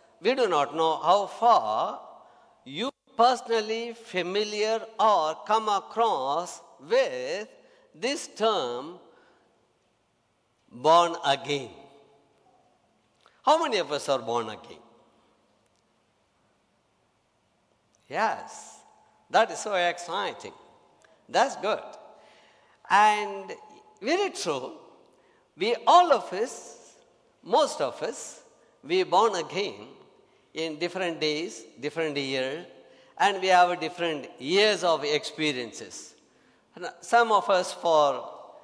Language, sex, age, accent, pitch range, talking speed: English, male, 60-79, Indian, 155-235 Hz, 95 wpm